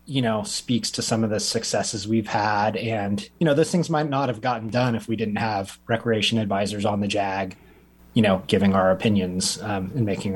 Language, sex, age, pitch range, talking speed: English, male, 30-49, 105-130 Hz, 215 wpm